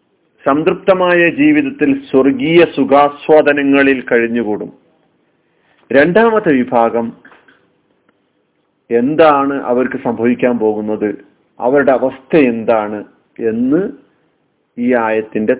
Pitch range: 105-145 Hz